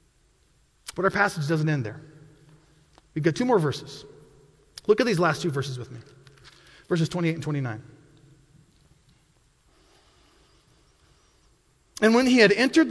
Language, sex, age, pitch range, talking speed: English, male, 30-49, 170-230 Hz, 130 wpm